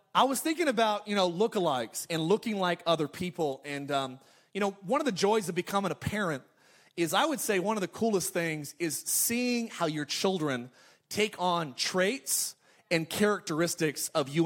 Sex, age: male, 30-49